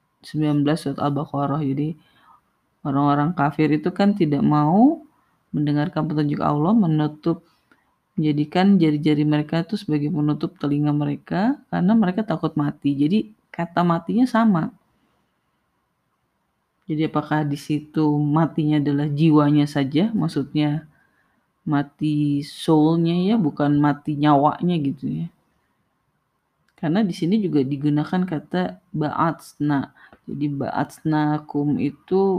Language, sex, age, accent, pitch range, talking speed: Indonesian, female, 30-49, native, 145-175 Hz, 105 wpm